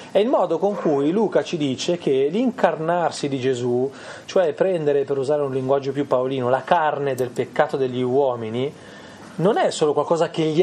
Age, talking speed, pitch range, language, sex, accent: 30-49, 180 wpm, 130-185 Hz, Italian, male, native